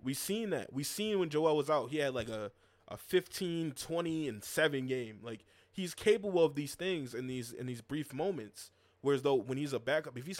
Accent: American